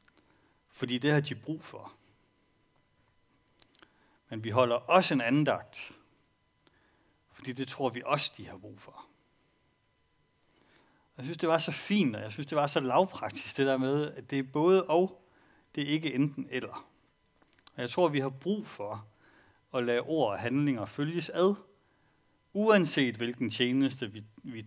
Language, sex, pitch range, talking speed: Danish, male, 110-145 Hz, 160 wpm